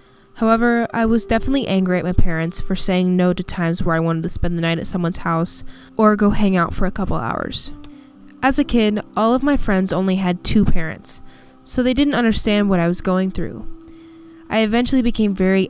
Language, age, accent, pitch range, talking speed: English, 10-29, American, 165-210 Hz, 210 wpm